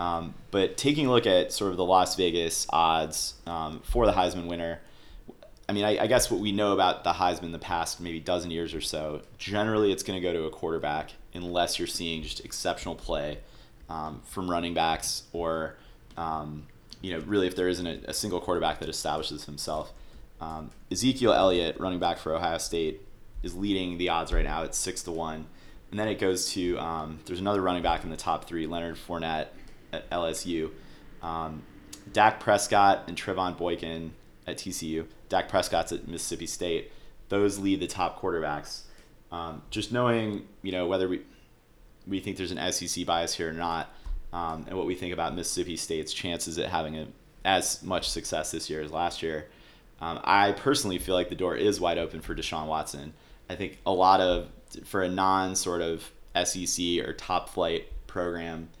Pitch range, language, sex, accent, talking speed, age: 80-95 Hz, English, male, American, 185 wpm, 30-49